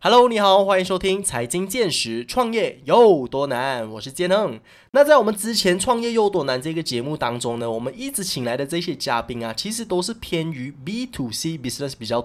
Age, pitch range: 20-39, 125-195 Hz